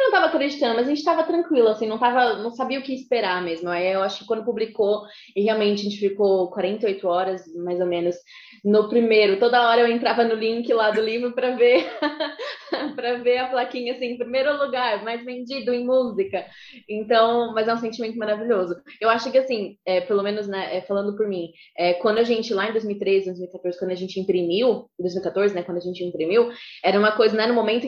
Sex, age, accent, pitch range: female, 20-39, Brazilian, 205-255 Hz